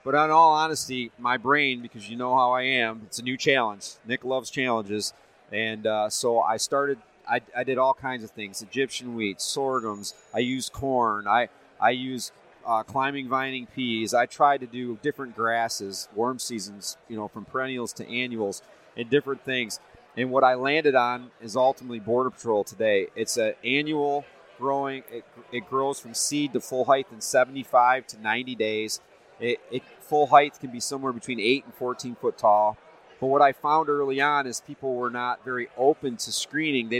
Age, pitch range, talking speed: 30-49, 120-140 Hz, 185 wpm